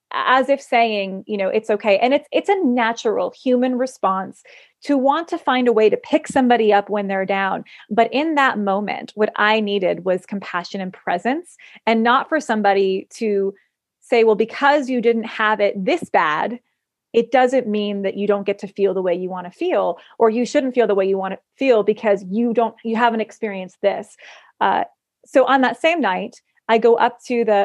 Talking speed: 205 wpm